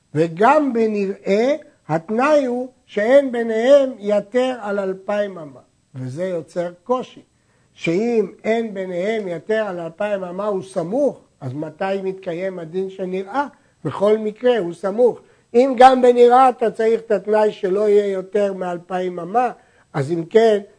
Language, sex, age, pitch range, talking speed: Hebrew, male, 60-79, 170-235 Hz, 135 wpm